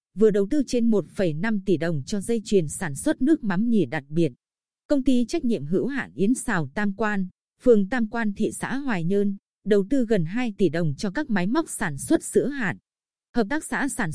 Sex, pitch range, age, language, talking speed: female, 185-240 Hz, 20-39, Vietnamese, 220 wpm